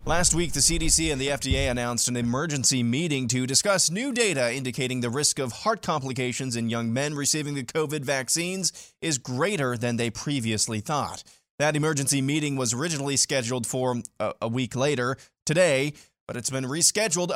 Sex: male